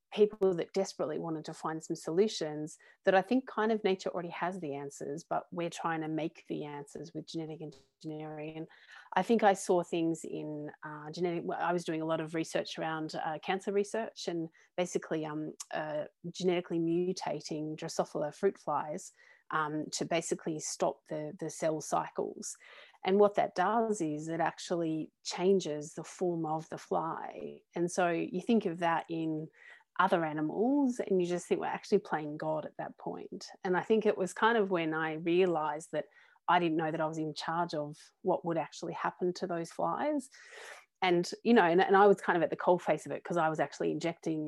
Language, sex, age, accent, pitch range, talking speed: English, female, 30-49, Australian, 155-185 Hz, 195 wpm